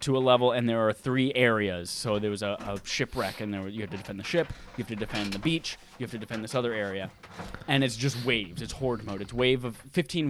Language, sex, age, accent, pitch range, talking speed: English, male, 10-29, American, 110-155 Hz, 275 wpm